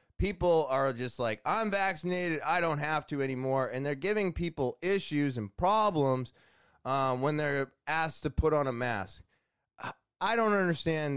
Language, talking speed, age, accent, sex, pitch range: English, 160 wpm, 20-39, American, male, 115-155 Hz